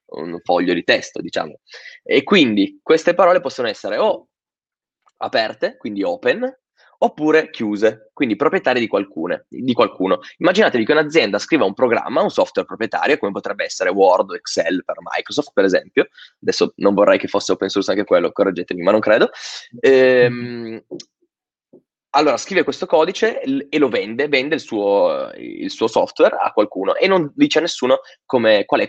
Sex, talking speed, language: male, 160 wpm, Italian